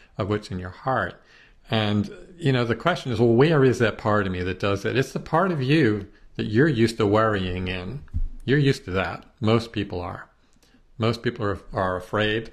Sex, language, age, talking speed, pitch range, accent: male, English, 50-69, 210 wpm, 100-120 Hz, American